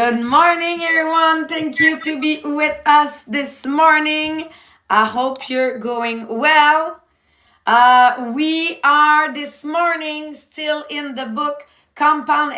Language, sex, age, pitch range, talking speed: English, female, 30-49, 230-290 Hz, 125 wpm